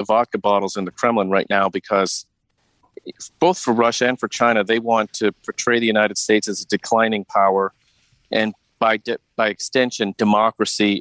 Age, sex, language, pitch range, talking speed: 40-59, male, English, 100-115 Hz, 165 wpm